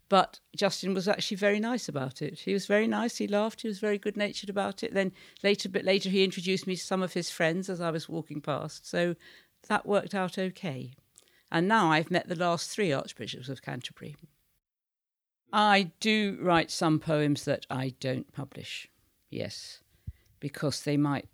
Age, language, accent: 50-69, English, British